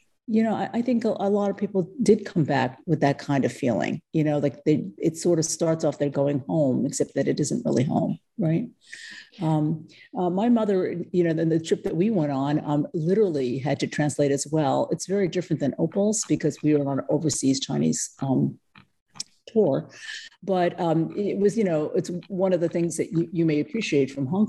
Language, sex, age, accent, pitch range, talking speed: English, female, 50-69, American, 150-190 Hz, 220 wpm